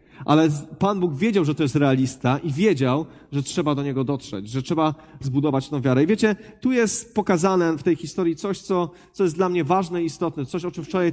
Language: Polish